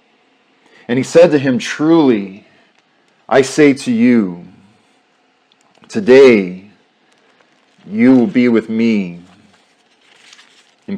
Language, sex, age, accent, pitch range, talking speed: English, male, 40-59, American, 115-190 Hz, 95 wpm